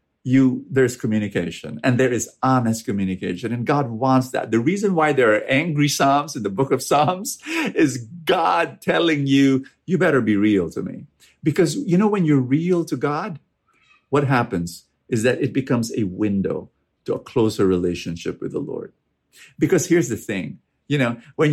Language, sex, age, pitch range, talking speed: English, male, 50-69, 115-170 Hz, 180 wpm